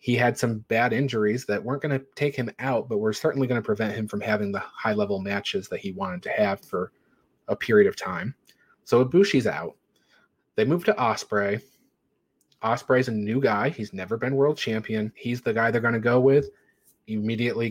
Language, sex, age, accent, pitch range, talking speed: English, male, 30-49, American, 110-140 Hz, 205 wpm